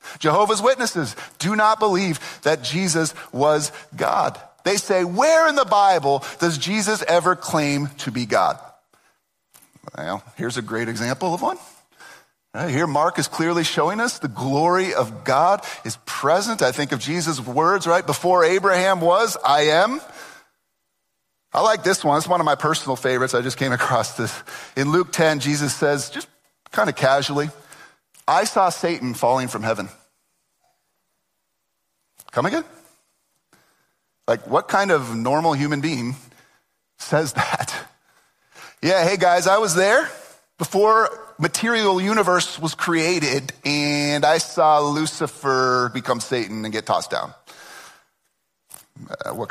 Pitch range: 135-185 Hz